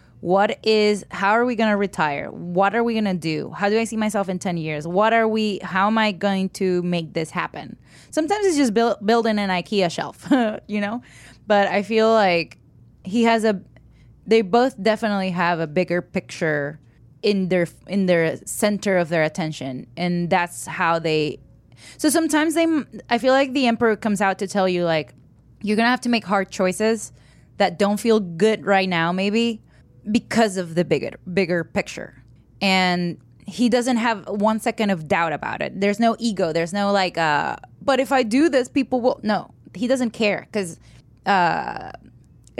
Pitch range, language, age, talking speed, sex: 170-225 Hz, English, 20-39, 190 wpm, female